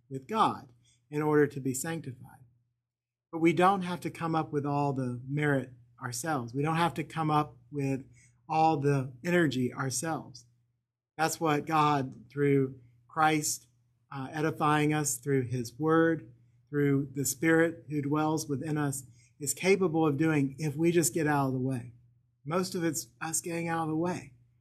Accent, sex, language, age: American, male, English, 40-59